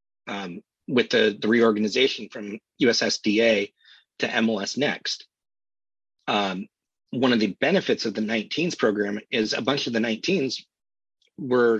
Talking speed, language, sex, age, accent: 130 wpm, English, male, 30-49, American